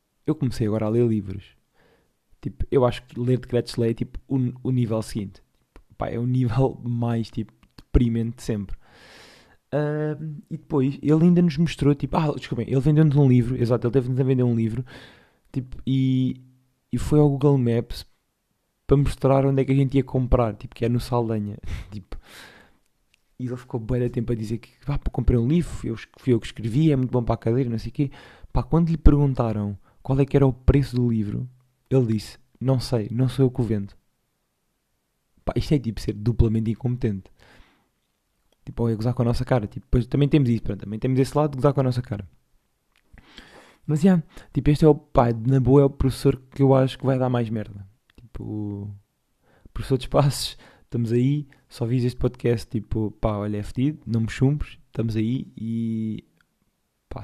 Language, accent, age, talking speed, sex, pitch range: Portuguese, Portuguese, 20-39, 205 wpm, male, 115-135 Hz